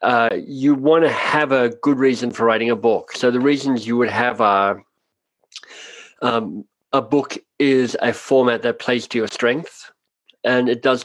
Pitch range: 115-135 Hz